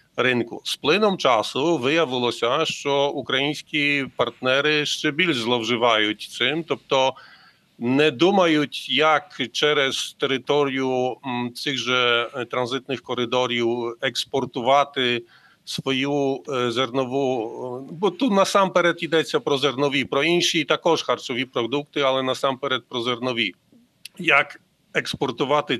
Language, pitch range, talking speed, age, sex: Ukrainian, 130-160 Hz, 100 wpm, 40-59, male